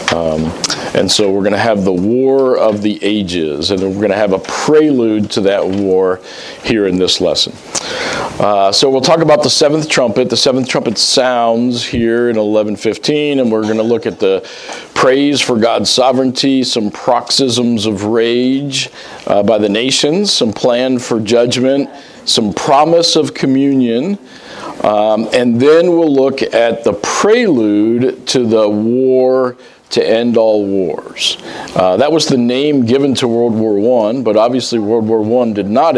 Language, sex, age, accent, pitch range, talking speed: English, male, 40-59, American, 105-130 Hz, 165 wpm